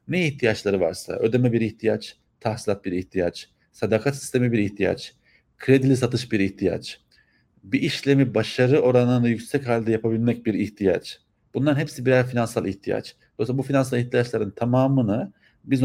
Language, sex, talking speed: Turkish, male, 140 wpm